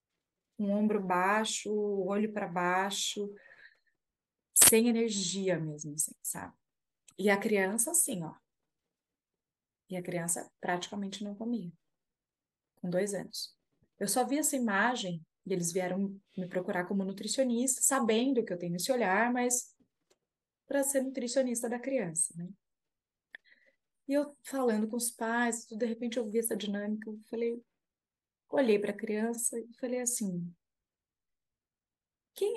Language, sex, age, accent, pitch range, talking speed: Portuguese, female, 20-39, Brazilian, 185-240 Hz, 135 wpm